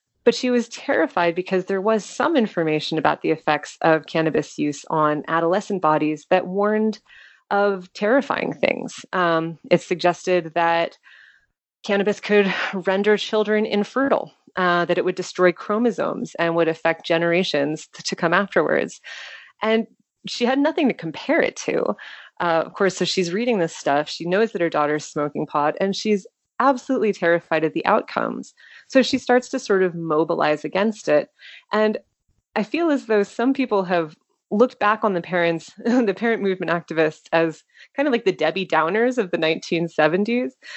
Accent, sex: American, female